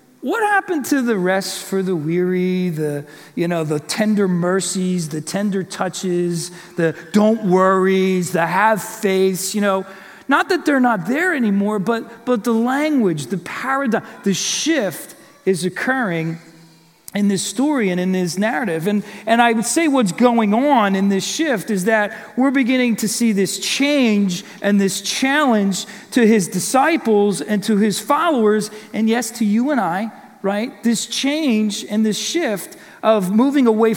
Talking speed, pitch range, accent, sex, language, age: 165 wpm, 190-240 Hz, American, male, English, 40-59